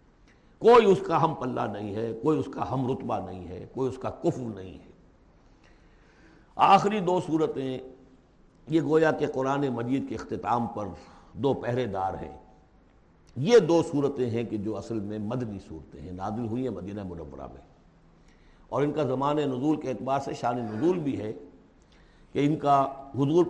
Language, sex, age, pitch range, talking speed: Urdu, male, 60-79, 110-150 Hz, 175 wpm